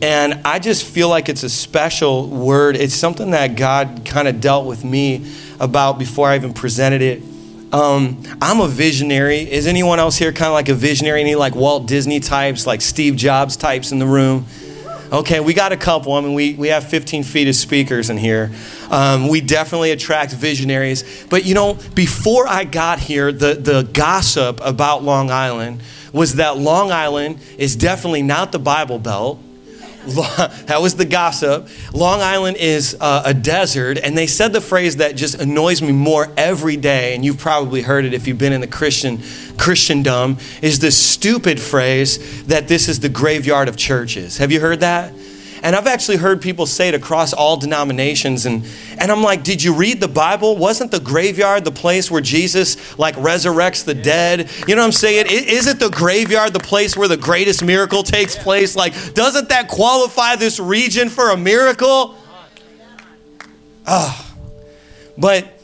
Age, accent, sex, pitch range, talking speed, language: 30-49, American, male, 135-175 Hz, 180 wpm, English